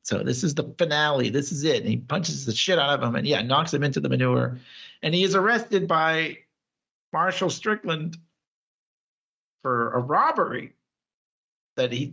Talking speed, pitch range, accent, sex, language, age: 175 wpm, 145-240 Hz, American, male, English, 50-69